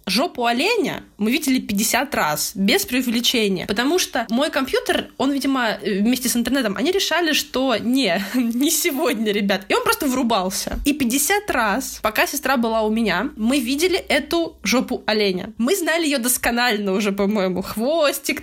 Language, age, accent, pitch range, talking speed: Russian, 20-39, native, 210-275 Hz, 155 wpm